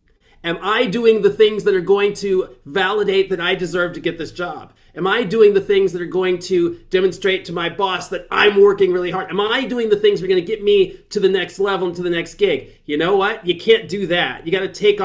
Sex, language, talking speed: male, English, 265 wpm